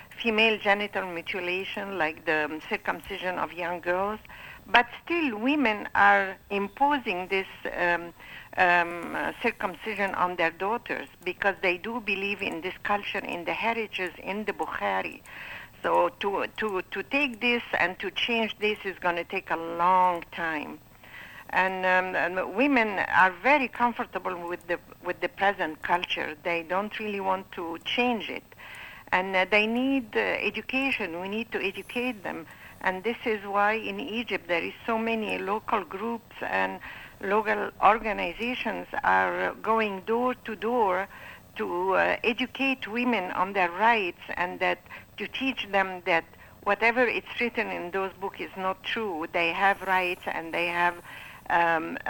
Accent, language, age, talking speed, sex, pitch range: Italian, English, 60-79, 150 wpm, female, 180-225 Hz